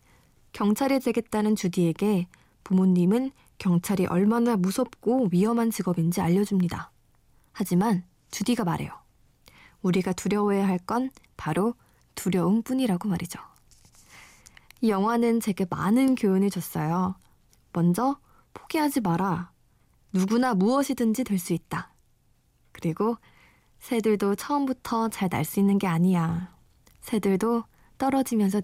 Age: 20-39